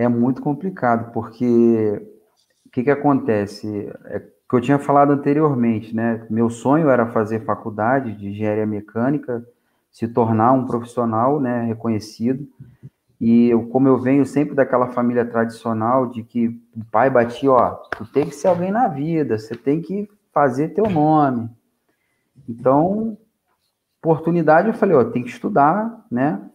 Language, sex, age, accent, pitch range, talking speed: Portuguese, male, 40-59, Brazilian, 120-165 Hz, 150 wpm